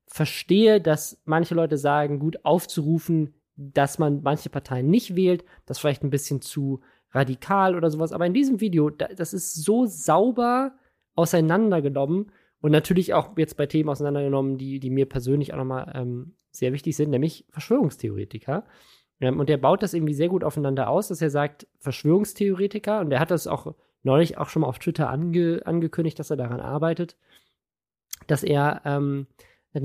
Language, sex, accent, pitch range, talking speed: German, male, German, 140-175 Hz, 170 wpm